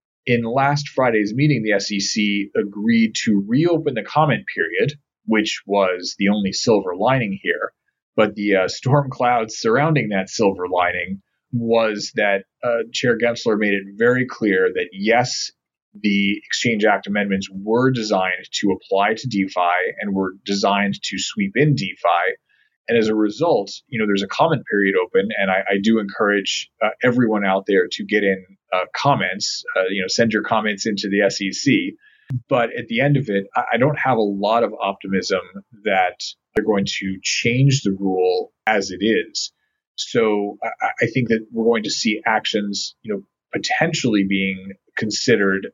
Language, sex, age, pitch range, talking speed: English, male, 30-49, 100-125 Hz, 170 wpm